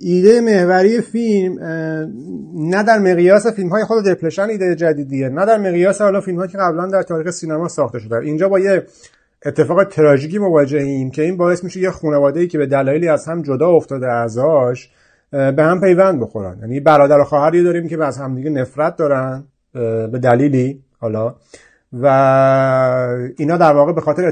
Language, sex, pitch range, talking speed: Persian, male, 135-180 Hz, 165 wpm